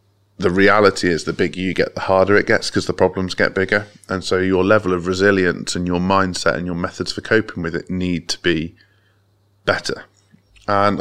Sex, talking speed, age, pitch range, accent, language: male, 200 wpm, 20-39, 90-105 Hz, British, English